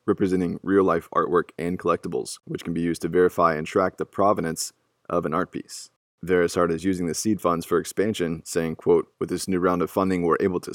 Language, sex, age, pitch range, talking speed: English, male, 20-39, 85-95 Hz, 210 wpm